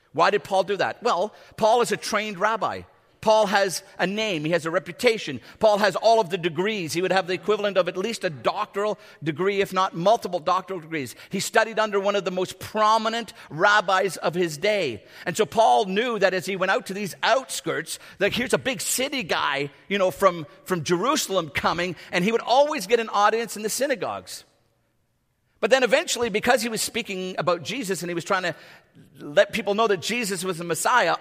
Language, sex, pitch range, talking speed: English, male, 180-230 Hz, 210 wpm